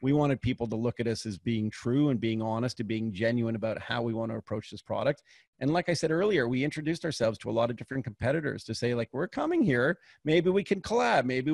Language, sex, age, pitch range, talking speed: English, male, 40-59, 115-150 Hz, 255 wpm